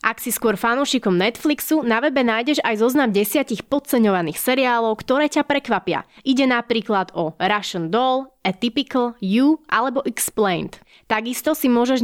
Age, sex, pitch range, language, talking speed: 20-39, female, 200-265 Hz, Slovak, 140 wpm